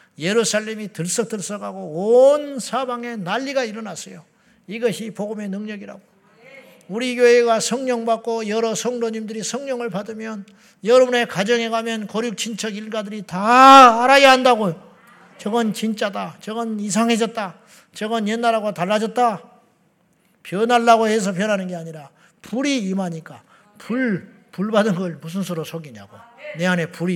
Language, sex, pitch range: Korean, male, 175-225 Hz